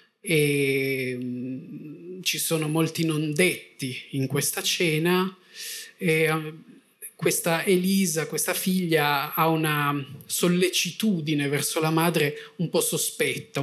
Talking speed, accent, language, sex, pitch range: 100 wpm, native, Italian, male, 140-180 Hz